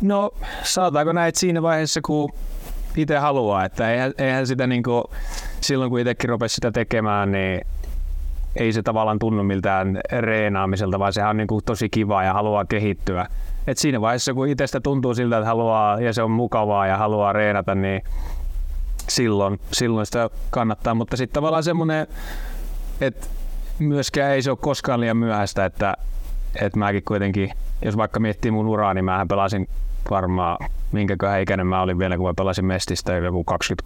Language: Finnish